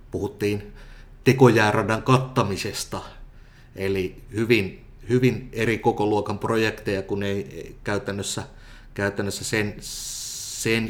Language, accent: Finnish, native